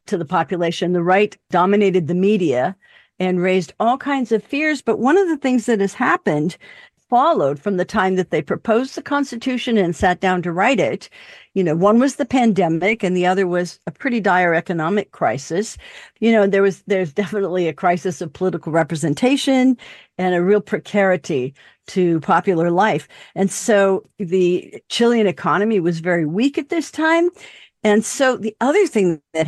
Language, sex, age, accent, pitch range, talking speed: English, female, 50-69, American, 180-230 Hz, 175 wpm